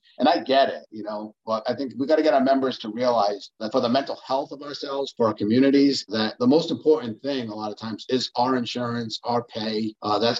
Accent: American